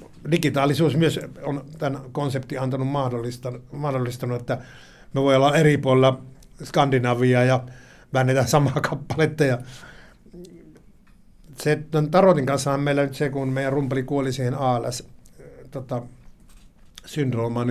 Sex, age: male, 60-79